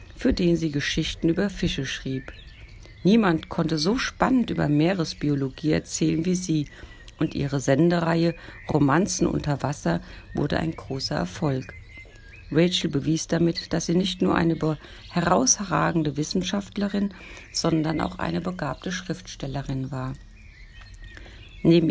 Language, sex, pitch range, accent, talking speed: German, female, 125-170 Hz, German, 120 wpm